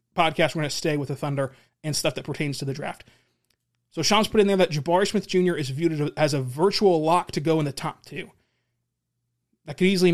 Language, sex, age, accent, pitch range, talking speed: English, male, 30-49, American, 145-185 Hz, 230 wpm